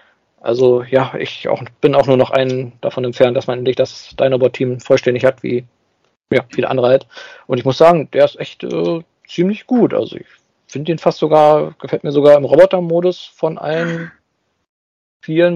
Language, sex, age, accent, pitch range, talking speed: English, male, 40-59, German, 125-160 Hz, 180 wpm